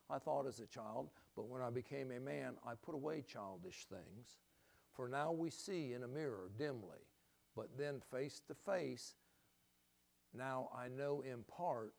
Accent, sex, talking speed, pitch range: American, male, 170 wpm, 100-130 Hz